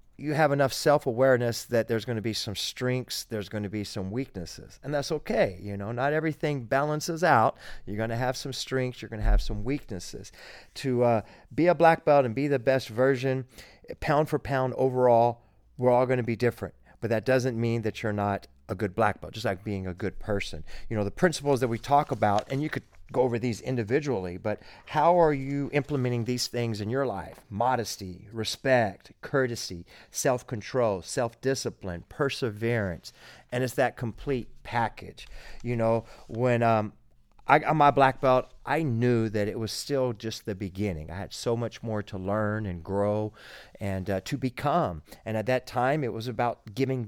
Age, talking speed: 40-59, 195 wpm